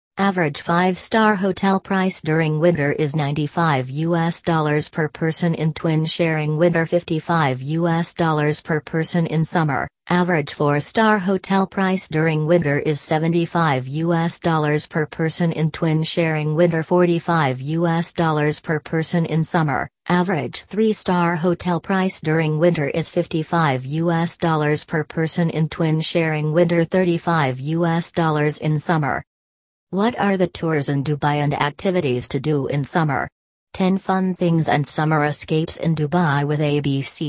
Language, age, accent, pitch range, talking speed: English, 40-59, American, 145-175 Hz, 150 wpm